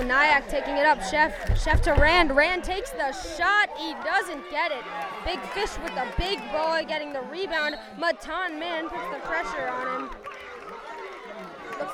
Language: English